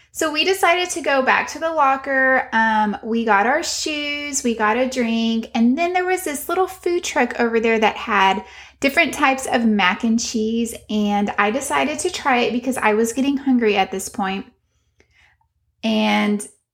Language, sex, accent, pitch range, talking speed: English, female, American, 215-265 Hz, 185 wpm